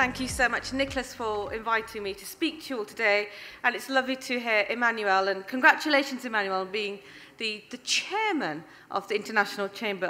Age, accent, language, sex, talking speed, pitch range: 40-59, British, English, female, 190 wpm, 205-250 Hz